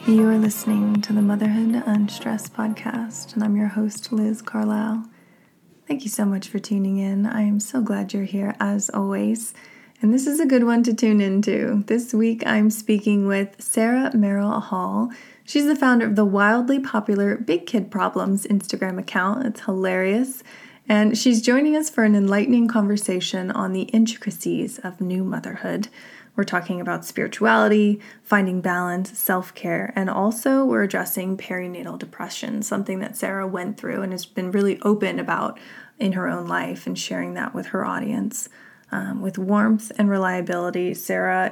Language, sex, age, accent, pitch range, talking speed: English, female, 20-39, American, 190-225 Hz, 165 wpm